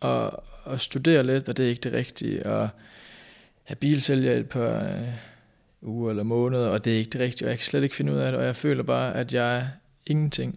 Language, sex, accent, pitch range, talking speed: Danish, male, native, 115-145 Hz, 235 wpm